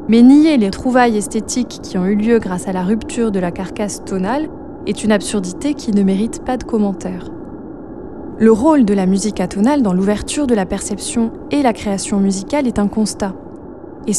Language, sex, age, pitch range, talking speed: French, female, 20-39, 205-300 Hz, 190 wpm